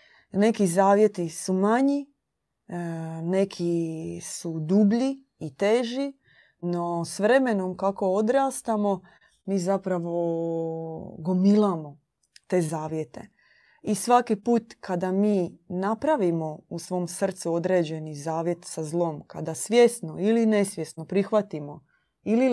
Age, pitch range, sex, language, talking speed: 30-49, 165-210 Hz, female, Croatian, 100 wpm